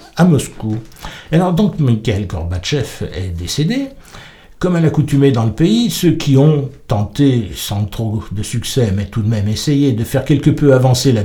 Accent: French